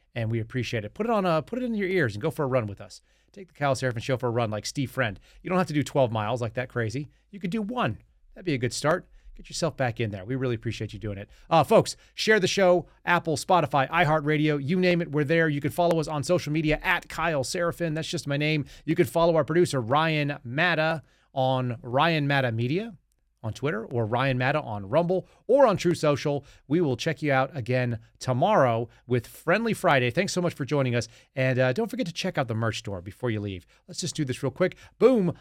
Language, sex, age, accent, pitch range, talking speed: English, male, 30-49, American, 125-170 Hz, 245 wpm